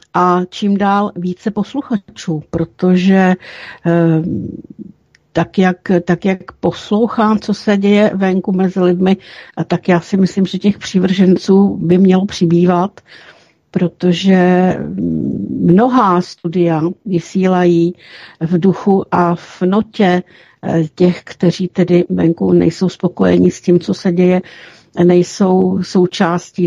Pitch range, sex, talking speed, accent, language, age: 170-195 Hz, female, 115 wpm, native, Czech, 60-79